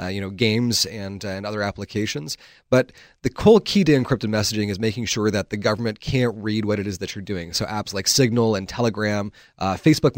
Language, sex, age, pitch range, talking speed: English, male, 30-49, 95-120 Hz, 225 wpm